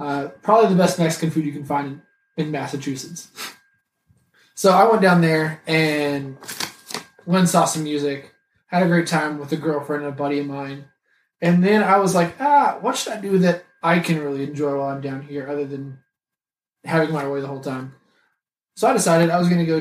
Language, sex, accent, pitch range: English, male, American, 150-180 Hz